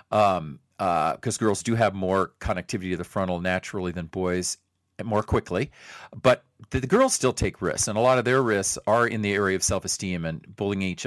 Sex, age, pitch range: male, 40-59, 90-115 Hz